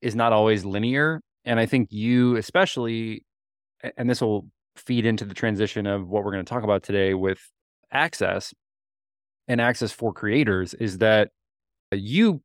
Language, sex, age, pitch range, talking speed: English, male, 20-39, 105-125 Hz, 160 wpm